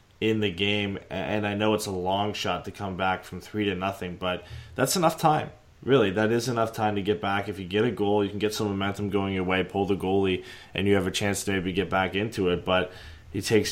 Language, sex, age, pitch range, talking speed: English, male, 20-39, 95-105 Hz, 260 wpm